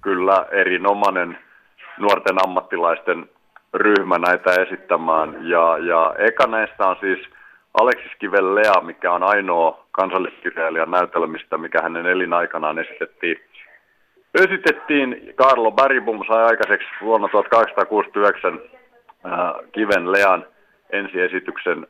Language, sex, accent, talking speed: Finnish, male, native, 95 wpm